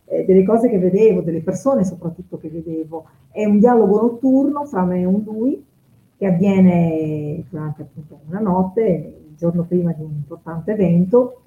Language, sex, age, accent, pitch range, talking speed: Italian, female, 30-49, native, 170-190 Hz, 160 wpm